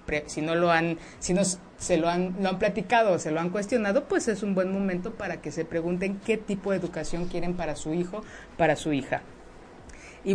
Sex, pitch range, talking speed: female, 165-205 Hz, 215 wpm